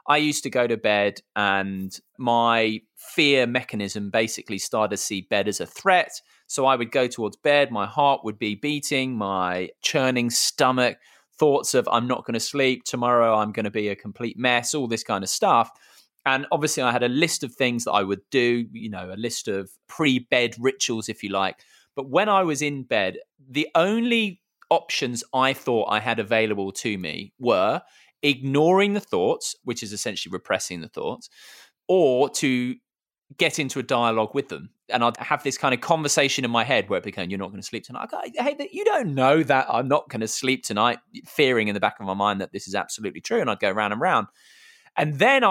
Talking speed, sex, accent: 210 wpm, male, British